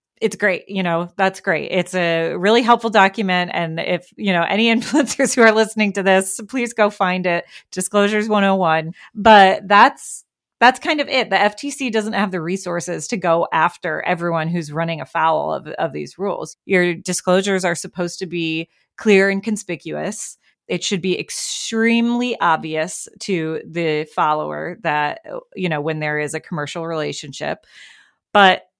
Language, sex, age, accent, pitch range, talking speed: English, female, 30-49, American, 165-205 Hz, 165 wpm